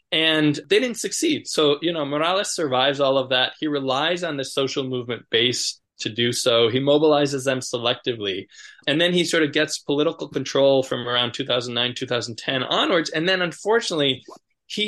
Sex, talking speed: male, 175 wpm